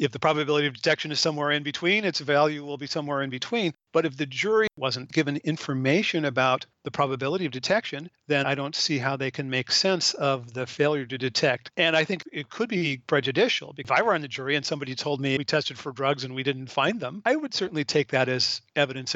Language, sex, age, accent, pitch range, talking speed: English, male, 50-69, American, 130-150 Hz, 235 wpm